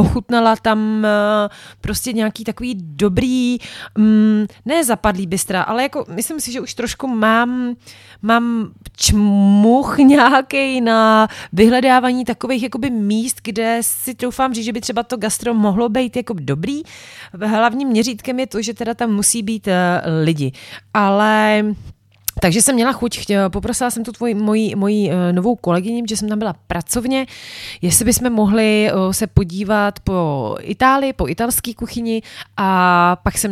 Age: 30-49